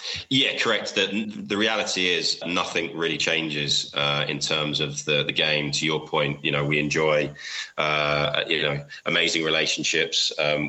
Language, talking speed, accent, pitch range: English, 165 wpm, British, 75-80 Hz